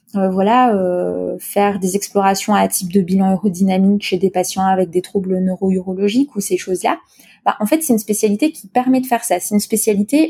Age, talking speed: 20-39, 205 wpm